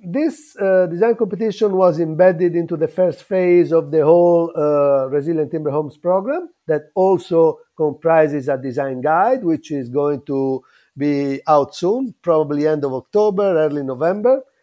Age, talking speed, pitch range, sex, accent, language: 50-69, 150 wpm, 145-185 Hz, male, Italian, English